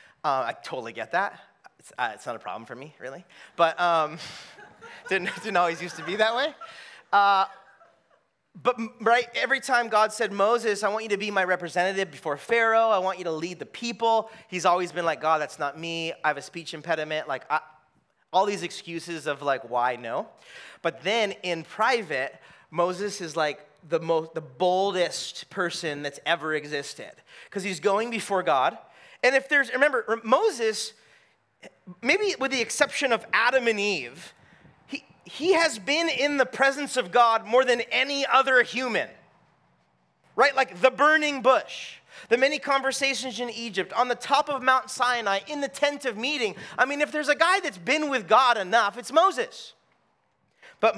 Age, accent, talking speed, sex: 30-49, American, 180 wpm, male